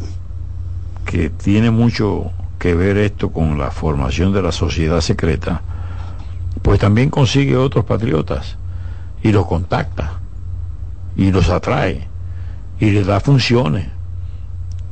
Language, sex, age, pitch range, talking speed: Spanish, male, 60-79, 90-105 Hz, 115 wpm